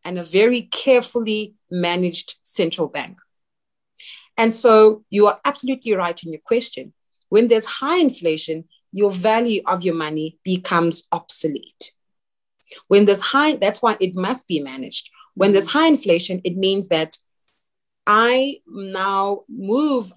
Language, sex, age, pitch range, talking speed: English, female, 30-49, 170-225 Hz, 135 wpm